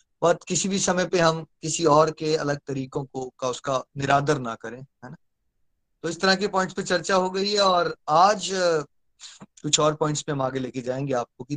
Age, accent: 20-39, native